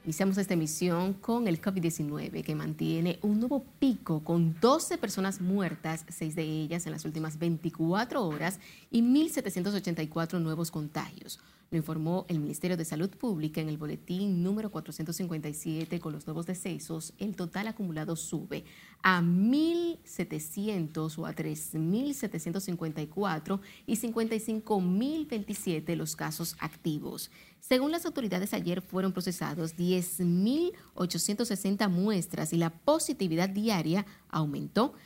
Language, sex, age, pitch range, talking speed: Spanish, female, 30-49, 165-210 Hz, 120 wpm